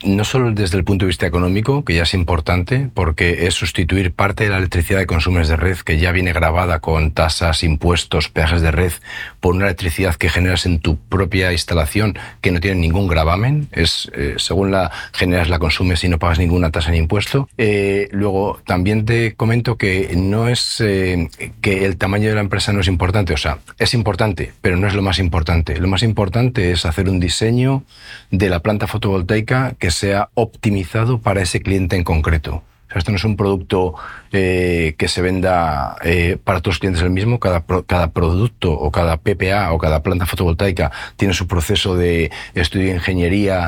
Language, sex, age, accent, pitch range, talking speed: Spanish, male, 40-59, Spanish, 90-105 Hz, 195 wpm